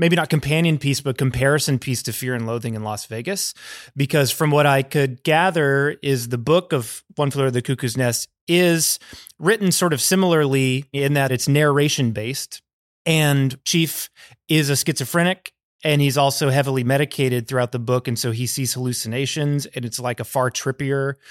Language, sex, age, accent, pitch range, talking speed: English, male, 30-49, American, 125-155 Hz, 175 wpm